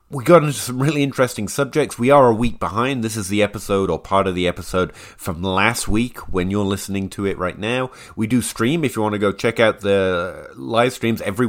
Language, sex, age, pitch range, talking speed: English, male, 30-49, 95-120 Hz, 235 wpm